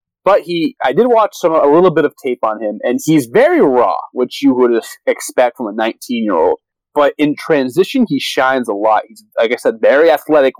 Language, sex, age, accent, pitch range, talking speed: English, male, 20-39, American, 120-175 Hz, 210 wpm